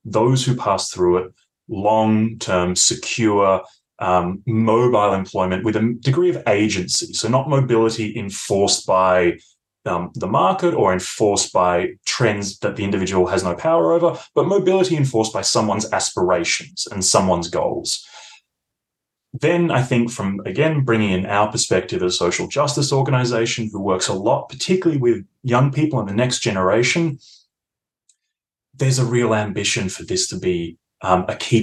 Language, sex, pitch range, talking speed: English, male, 95-130 Hz, 150 wpm